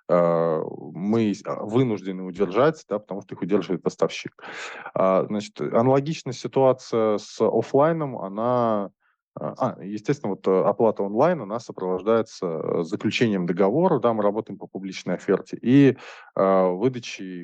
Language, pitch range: Russian, 95-115 Hz